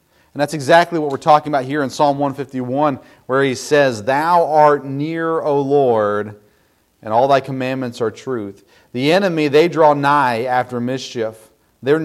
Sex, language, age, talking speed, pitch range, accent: male, English, 40-59, 165 wpm, 120-150 Hz, American